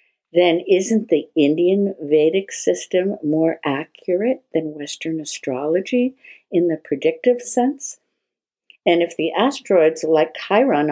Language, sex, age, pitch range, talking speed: English, female, 60-79, 160-245 Hz, 115 wpm